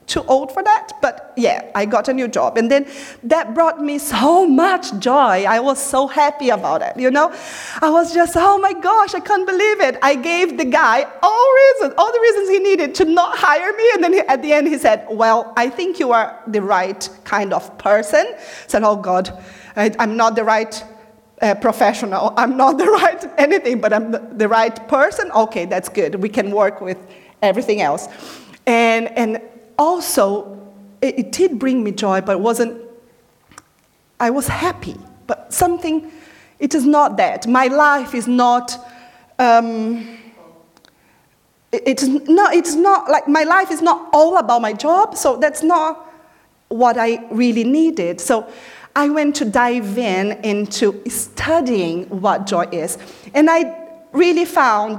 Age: 40-59